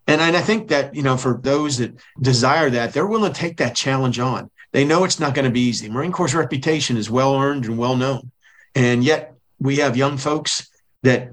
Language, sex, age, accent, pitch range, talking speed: English, male, 40-59, American, 125-145 Hz, 210 wpm